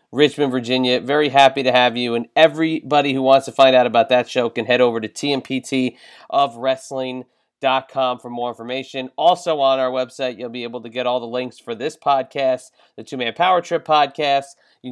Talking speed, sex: 195 wpm, male